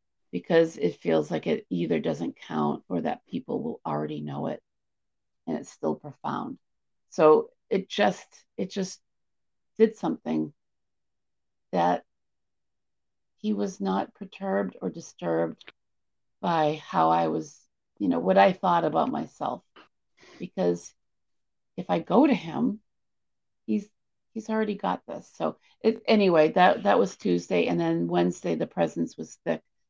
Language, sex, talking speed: English, female, 135 wpm